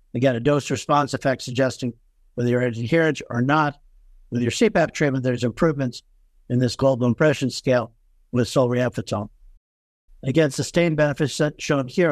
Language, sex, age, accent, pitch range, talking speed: English, male, 60-79, American, 120-155 Hz, 140 wpm